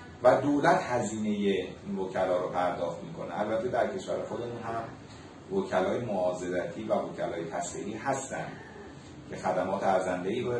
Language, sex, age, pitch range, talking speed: Persian, male, 40-59, 95-120 Hz, 130 wpm